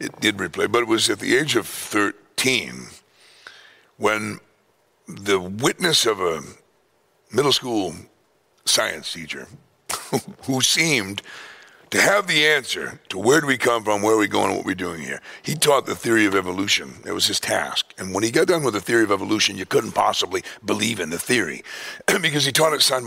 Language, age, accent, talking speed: English, 60-79, American, 190 wpm